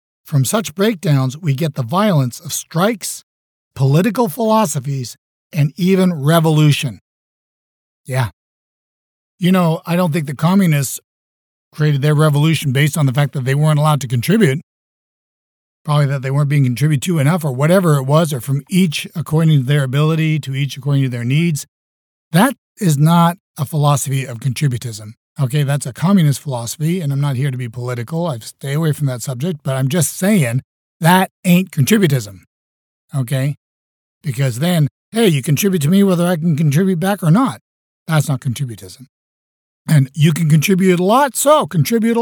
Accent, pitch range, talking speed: American, 135-170 Hz, 170 wpm